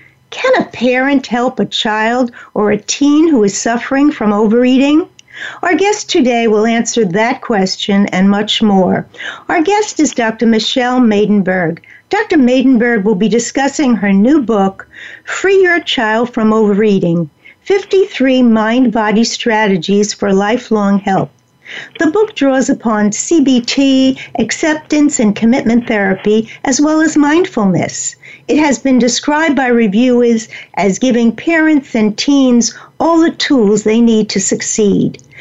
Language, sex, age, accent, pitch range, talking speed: English, female, 60-79, American, 210-275 Hz, 135 wpm